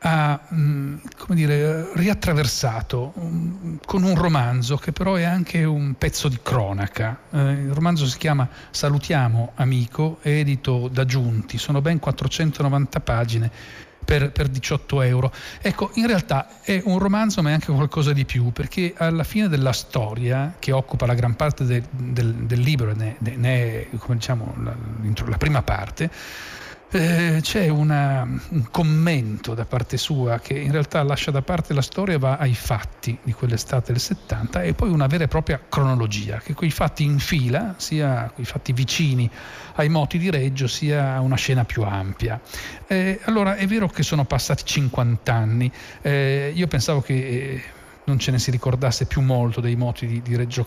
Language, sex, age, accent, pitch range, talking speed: Italian, male, 40-59, native, 120-155 Hz, 160 wpm